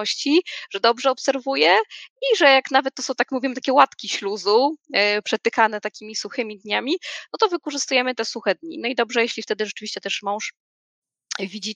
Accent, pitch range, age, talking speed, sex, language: native, 200-255 Hz, 20-39, 175 wpm, female, Polish